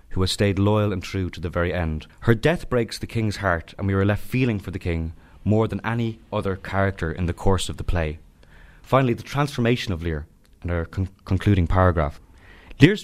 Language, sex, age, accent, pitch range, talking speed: English, male, 30-49, Irish, 85-110 Hz, 210 wpm